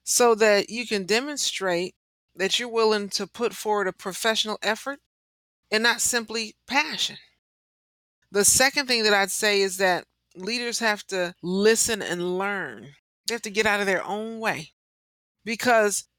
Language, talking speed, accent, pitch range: English, 155 wpm, American, 190-235 Hz